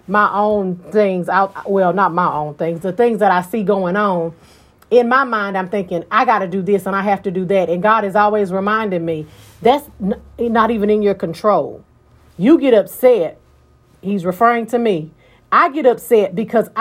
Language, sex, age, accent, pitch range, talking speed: English, female, 40-59, American, 185-235 Hz, 195 wpm